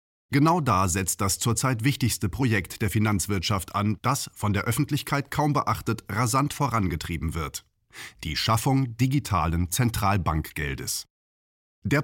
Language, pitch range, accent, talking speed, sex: German, 90-120 Hz, German, 120 wpm, male